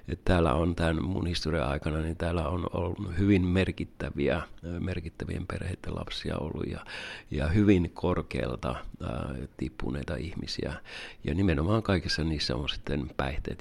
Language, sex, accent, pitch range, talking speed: Finnish, male, native, 80-95 Hz, 130 wpm